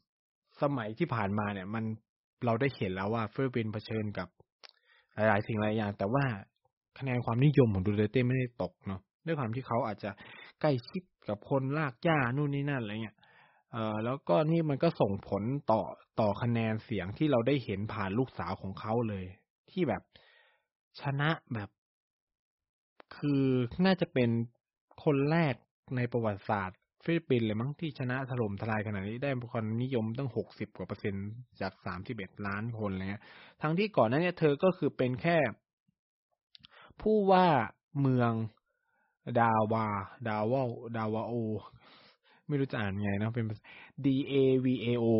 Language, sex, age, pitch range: Thai, male, 20-39, 105-135 Hz